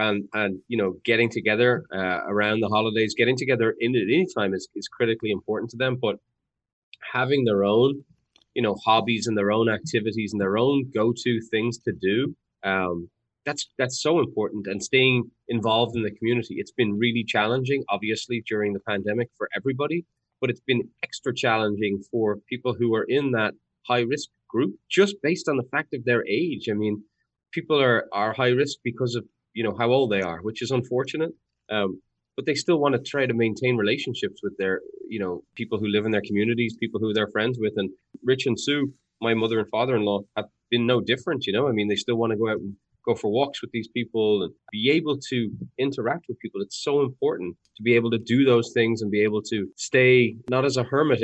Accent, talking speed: Irish, 210 wpm